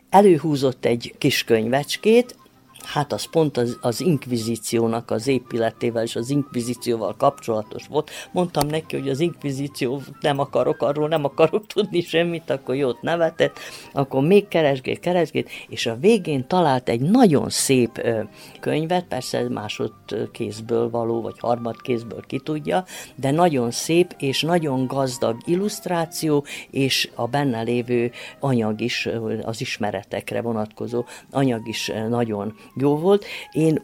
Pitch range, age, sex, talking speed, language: 115-145 Hz, 50-69, female, 135 wpm, Hungarian